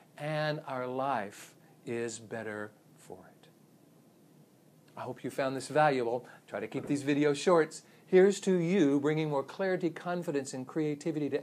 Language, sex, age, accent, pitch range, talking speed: English, male, 50-69, American, 135-170 Hz, 150 wpm